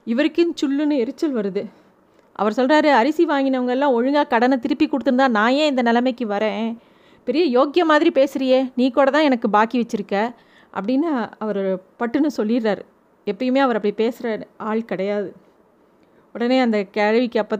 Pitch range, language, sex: 220-275 Hz, Tamil, female